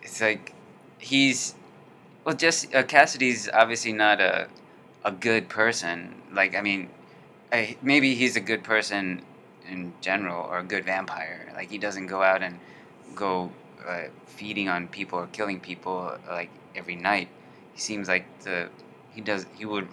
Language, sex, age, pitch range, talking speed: English, male, 20-39, 90-105 Hz, 165 wpm